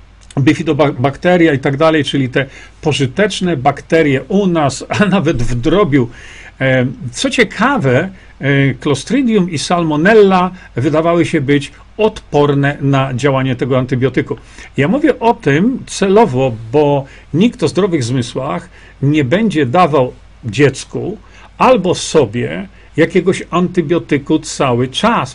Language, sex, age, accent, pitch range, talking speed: Polish, male, 50-69, native, 135-170 Hz, 110 wpm